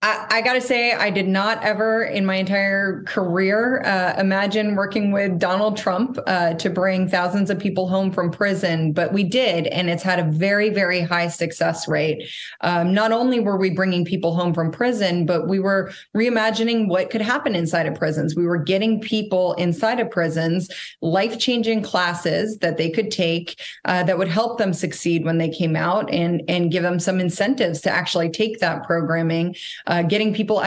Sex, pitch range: female, 170-205 Hz